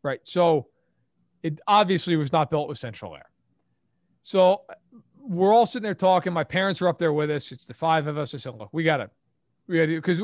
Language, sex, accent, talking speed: English, male, American, 210 wpm